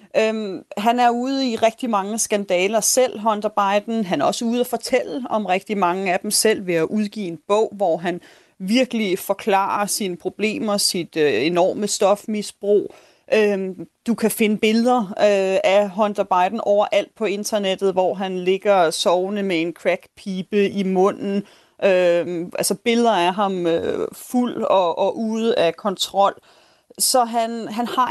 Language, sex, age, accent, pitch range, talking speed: Danish, female, 30-49, native, 195-230 Hz, 160 wpm